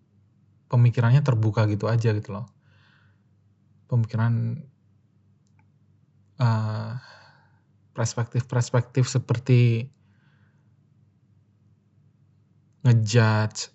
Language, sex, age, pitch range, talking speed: Indonesian, male, 20-39, 110-125 Hz, 50 wpm